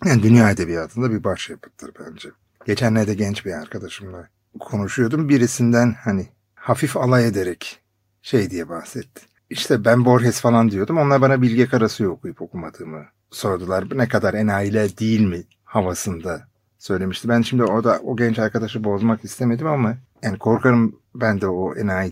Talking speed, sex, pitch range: 150 wpm, male, 100-120 Hz